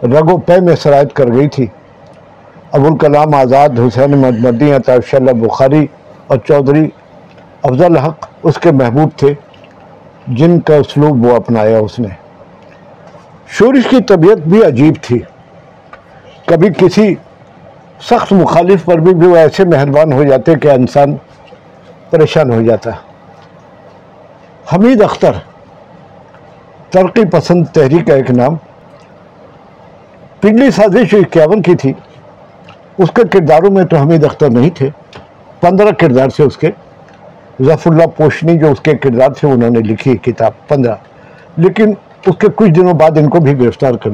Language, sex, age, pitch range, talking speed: Urdu, male, 50-69, 135-175 Hz, 145 wpm